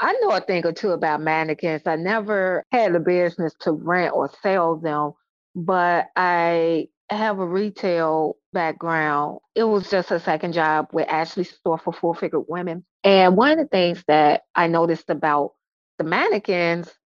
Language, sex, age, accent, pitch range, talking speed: English, female, 30-49, American, 165-200 Hz, 165 wpm